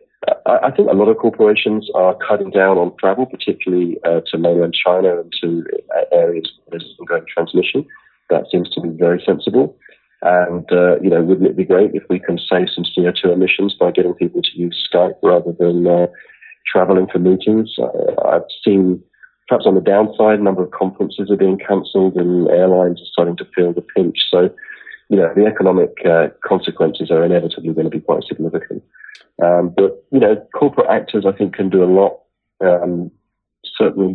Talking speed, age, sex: 185 wpm, 30-49, male